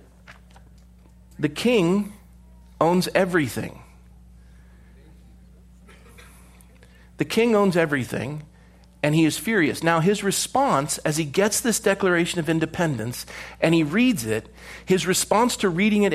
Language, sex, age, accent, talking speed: English, male, 40-59, American, 115 wpm